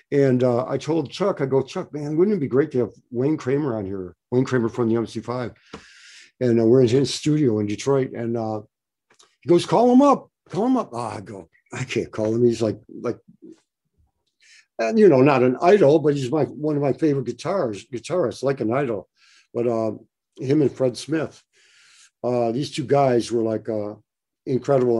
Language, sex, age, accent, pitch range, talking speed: English, male, 60-79, American, 110-140 Hz, 200 wpm